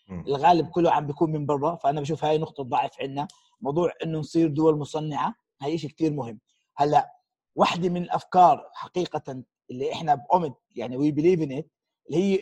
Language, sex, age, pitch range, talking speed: Arabic, male, 30-49, 150-195 Hz, 170 wpm